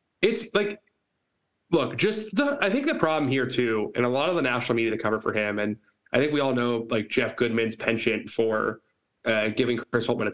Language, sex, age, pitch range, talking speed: English, male, 20-39, 110-130 Hz, 220 wpm